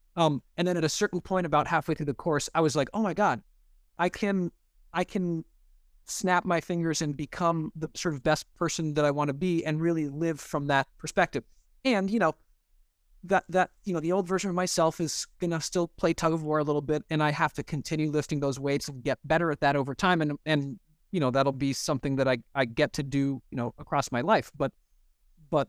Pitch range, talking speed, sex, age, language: 140-170 Hz, 235 wpm, male, 30-49, English